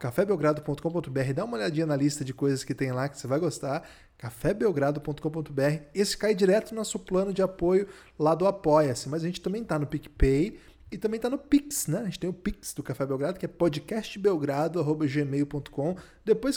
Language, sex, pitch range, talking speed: Portuguese, male, 145-190 Hz, 190 wpm